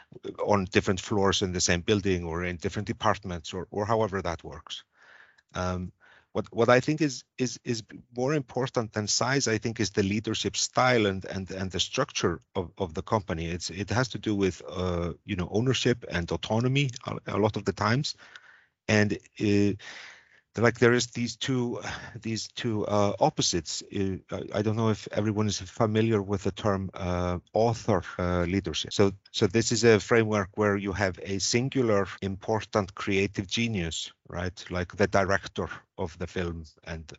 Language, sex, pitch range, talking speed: English, male, 90-110 Hz, 175 wpm